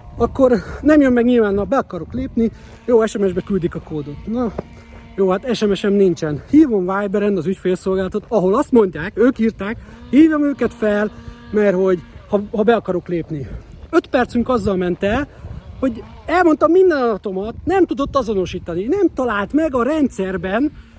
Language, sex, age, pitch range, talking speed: Hungarian, male, 30-49, 190-280 Hz, 155 wpm